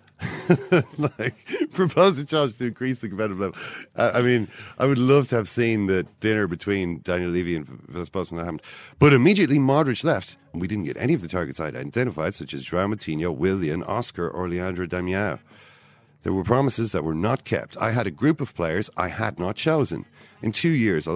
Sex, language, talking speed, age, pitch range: male, English, 200 wpm, 40-59, 90-130 Hz